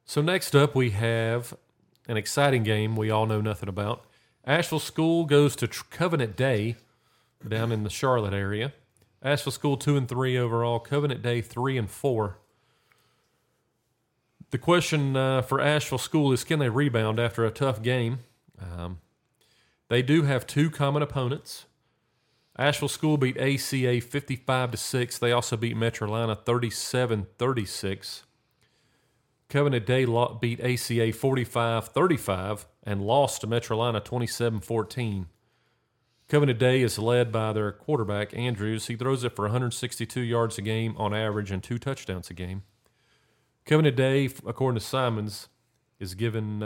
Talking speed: 130 wpm